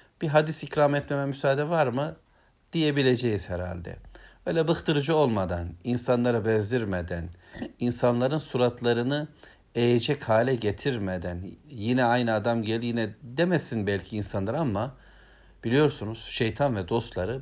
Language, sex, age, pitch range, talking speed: Turkish, male, 60-79, 105-140 Hz, 110 wpm